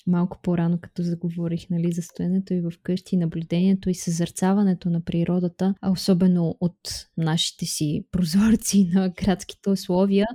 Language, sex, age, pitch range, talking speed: Bulgarian, female, 20-39, 180-215 Hz, 140 wpm